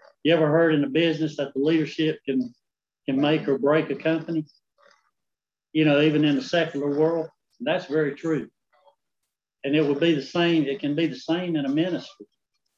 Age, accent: 60-79, American